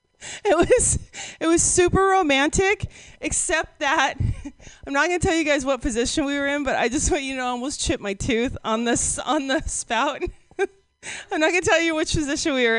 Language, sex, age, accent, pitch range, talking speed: English, female, 30-49, American, 230-340 Hz, 205 wpm